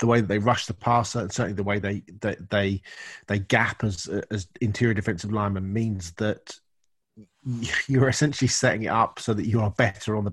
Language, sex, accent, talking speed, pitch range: English, male, British, 205 wpm, 100-115 Hz